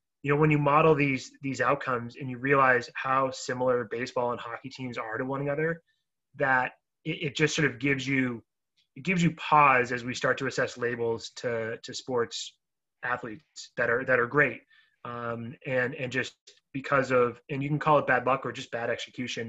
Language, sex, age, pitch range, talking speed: English, male, 20-39, 120-140 Hz, 200 wpm